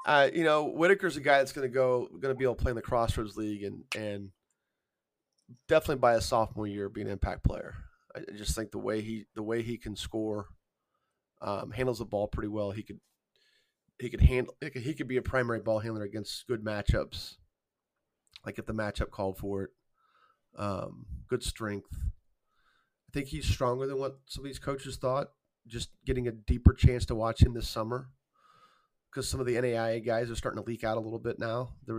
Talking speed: 205 wpm